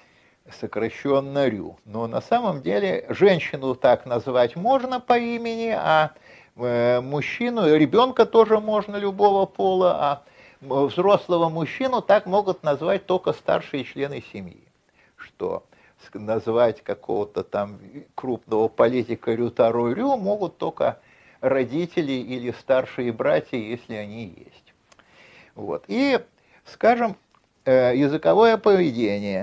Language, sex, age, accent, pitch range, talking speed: Russian, male, 50-69, native, 120-185 Hz, 105 wpm